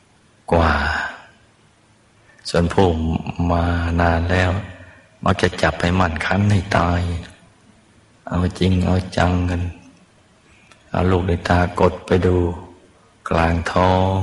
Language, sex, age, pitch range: Thai, male, 60-79, 85-105 Hz